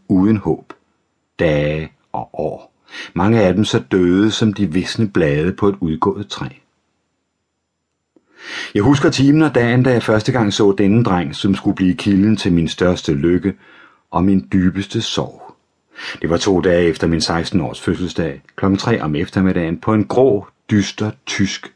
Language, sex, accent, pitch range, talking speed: English, male, Danish, 85-105 Hz, 165 wpm